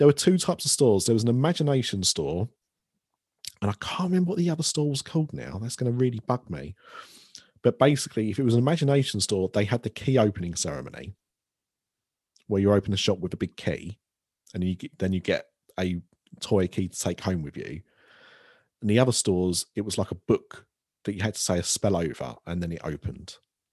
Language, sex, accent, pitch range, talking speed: English, male, British, 95-120 Hz, 215 wpm